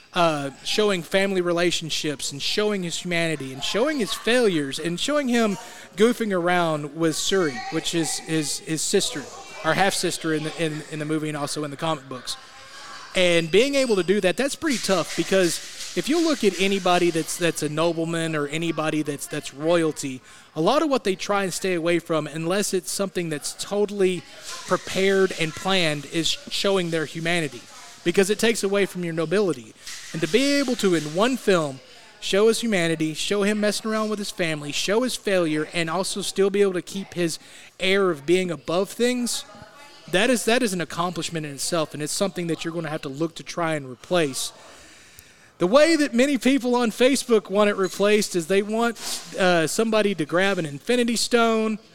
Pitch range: 160-205 Hz